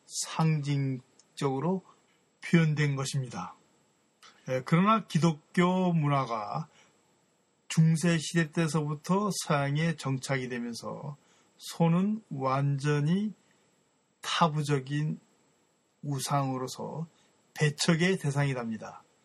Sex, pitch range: male, 130-170 Hz